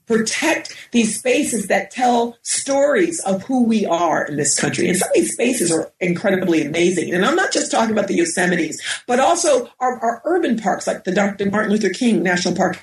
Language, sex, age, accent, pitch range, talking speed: English, female, 40-59, American, 180-245 Hz, 200 wpm